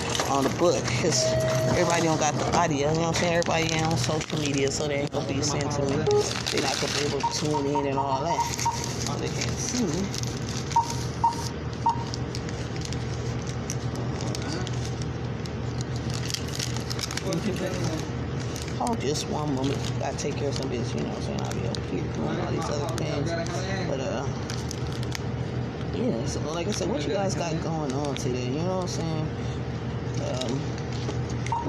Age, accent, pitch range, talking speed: 20-39, American, 125-150 Hz, 165 wpm